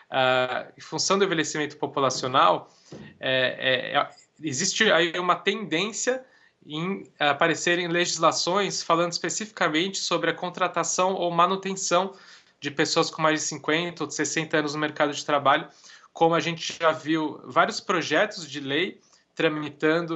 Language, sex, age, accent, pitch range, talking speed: Portuguese, male, 20-39, Brazilian, 145-175 Hz, 145 wpm